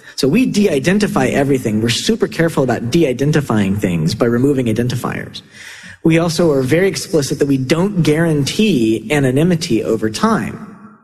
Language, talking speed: English, 135 wpm